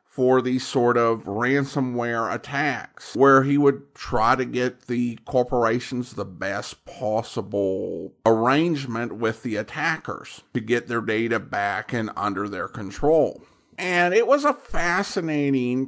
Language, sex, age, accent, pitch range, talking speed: English, male, 50-69, American, 125-170 Hz, 130 wpm